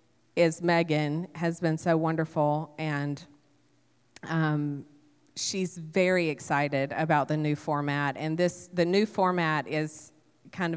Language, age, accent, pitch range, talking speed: English, 30-49, American, 145-170 Hz, 125 wpm